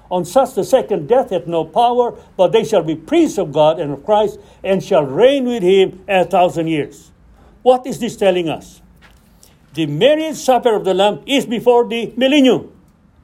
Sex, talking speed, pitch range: male, 185 wpm, 145-240 Hz